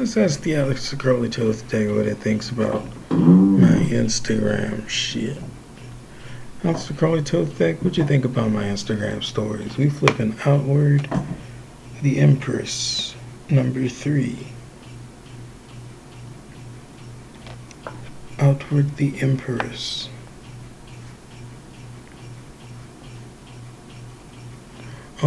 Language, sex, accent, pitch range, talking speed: English, male, American, 115-125 Hz, 85 wpm